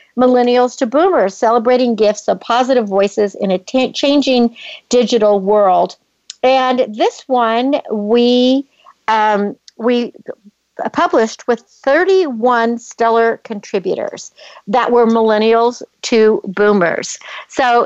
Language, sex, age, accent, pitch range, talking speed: English, female, 60-79, American, 210-255 Hz, 105 wpm